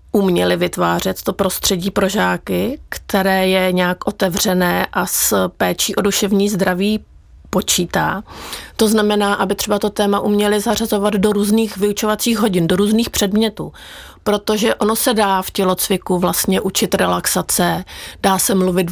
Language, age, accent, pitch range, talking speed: Czech, 30-49, native, 180-205 Hz, 140 wpm